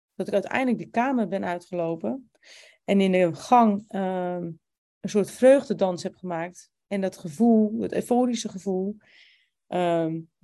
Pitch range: 175-215 Hz